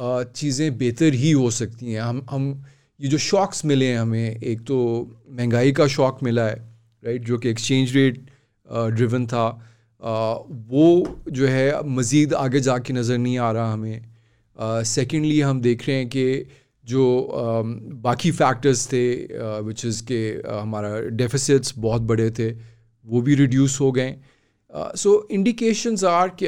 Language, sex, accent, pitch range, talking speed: English, male, Indian, 115-145 Hz, 100 wpm